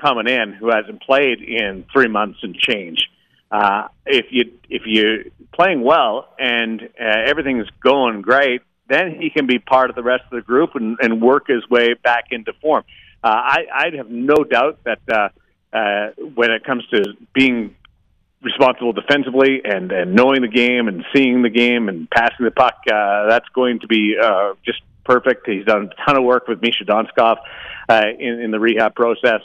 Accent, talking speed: American, 190 wpm